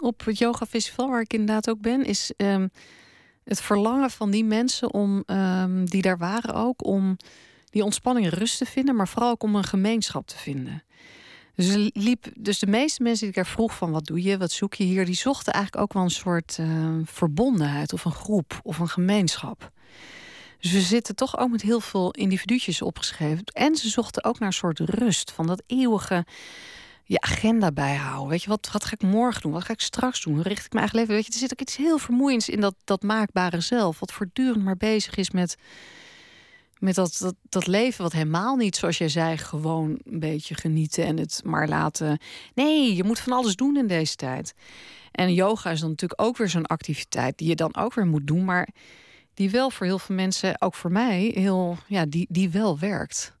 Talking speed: 215 wpm